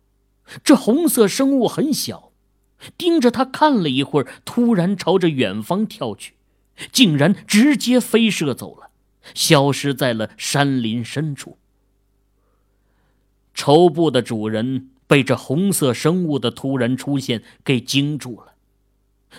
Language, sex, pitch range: Chinese, male, 105-175 Hz